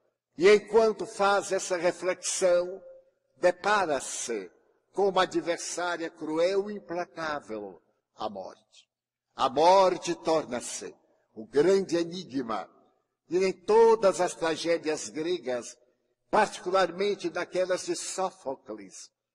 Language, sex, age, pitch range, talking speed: Portuguese, male, 60-79, 160-200 Hz, 95 wpm